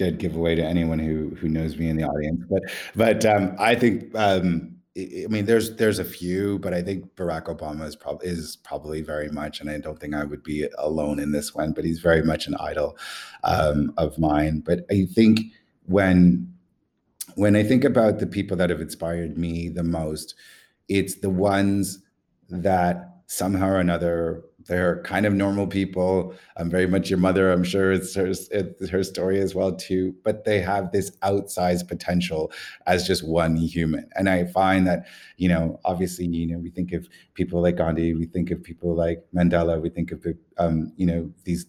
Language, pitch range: English, 85-95 Hz